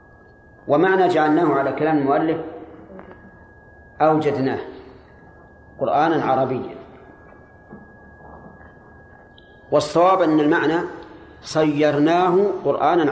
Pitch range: 140-175 Hz